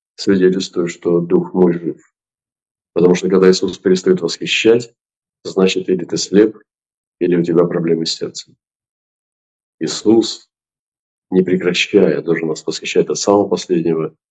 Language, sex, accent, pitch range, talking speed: Russian, male, native, 95-125 Hz, 125 wpm